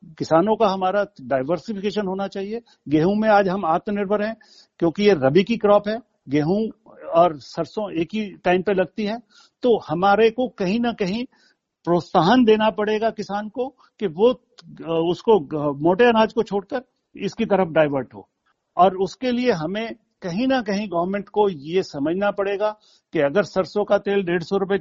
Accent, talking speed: native, 165 wpm